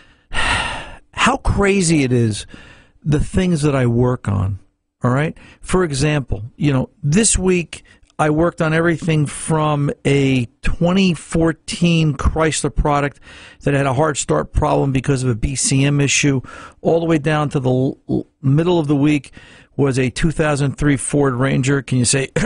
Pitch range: 120-150 Hz